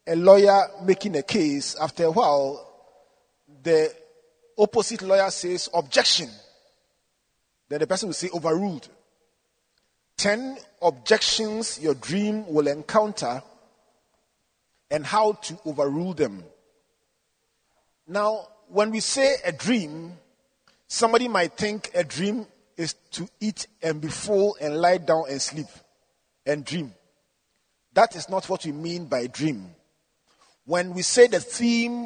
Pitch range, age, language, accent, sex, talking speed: 160-220 Hz, 40-59, English, Nigerian, male, 125 wpm